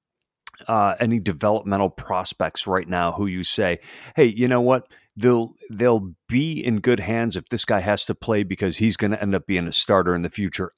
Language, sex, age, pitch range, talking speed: English, male, 40-59, 95-115 Hz, 200 wpm